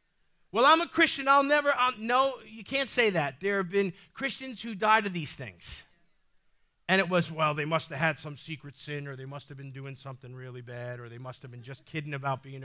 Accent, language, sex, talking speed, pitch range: American, English, male, 230 wpm, 175-245 Hz